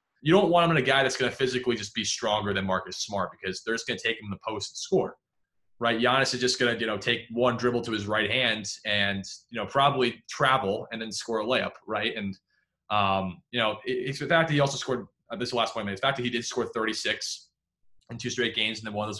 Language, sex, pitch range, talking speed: English, male, 110-135 Hz, 275 wpm